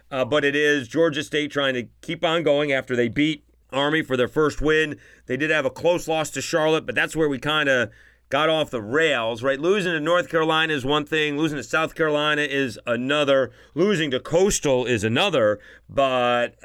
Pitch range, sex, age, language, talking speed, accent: 125-155 Hz, male, 40-59, English, 205 wpm, American